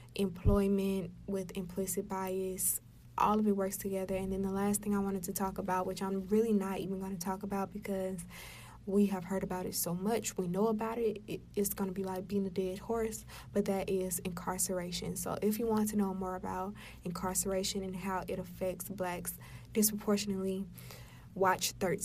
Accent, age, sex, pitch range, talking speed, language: American, 20-39, female, 185-200 Hz, 190 wpm, English